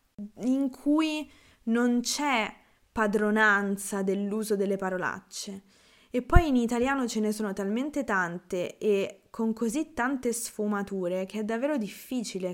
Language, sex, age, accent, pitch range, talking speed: Italian, female, 20-39, native, 185-220 Hz, 125 wpm